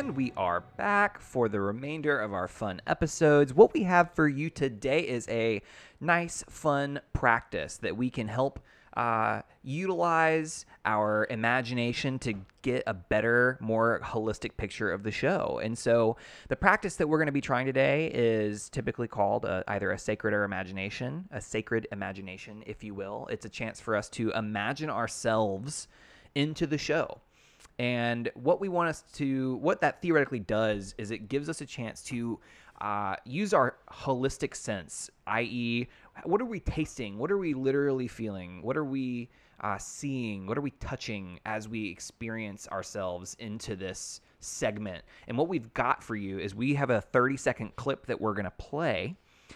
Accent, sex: American, male